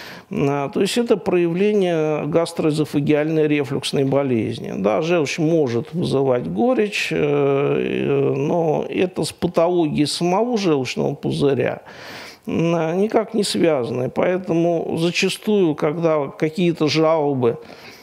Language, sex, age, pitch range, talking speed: Russian, male, 50-69, 135-165 Hz, 90 wpm